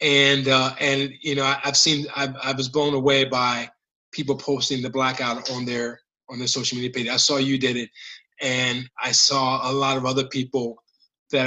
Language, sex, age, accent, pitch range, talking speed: English, male, 20-39, American, 130-165 Hz, 200 wpm